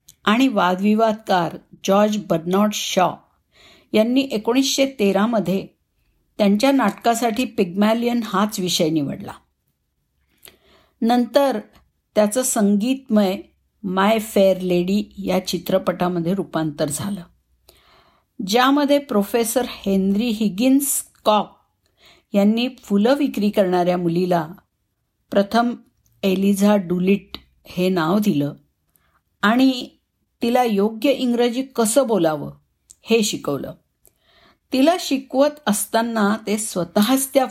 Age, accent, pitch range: 50-69, native, 180-235 Hz